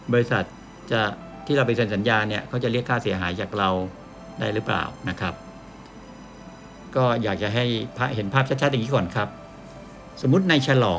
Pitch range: 105-135 Hz